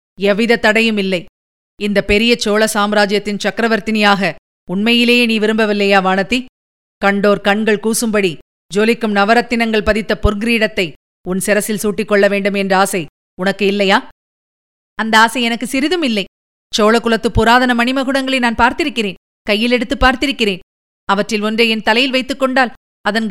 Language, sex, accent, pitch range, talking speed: Tamil, female, native, 205-255 Hz, 115 wpm